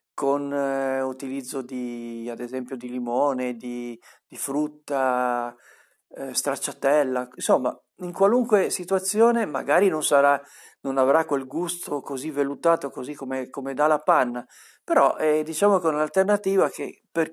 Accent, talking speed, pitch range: native, 140 wpm, 130-165 Hz